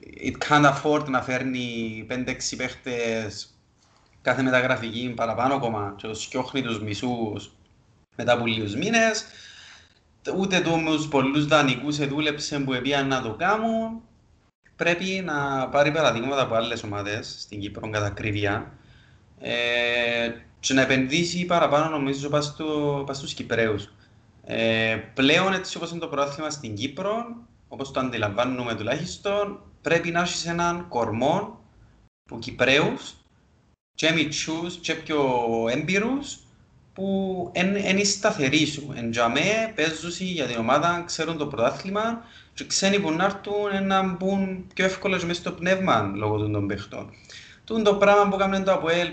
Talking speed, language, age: 125 wpm, Greek, 30-49